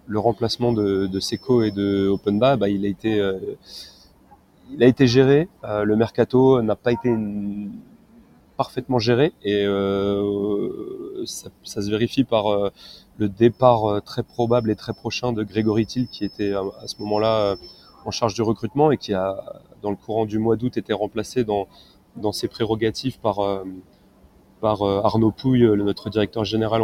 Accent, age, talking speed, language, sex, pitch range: French, 30-49, 175 wpm, French, male, 100-115 Hz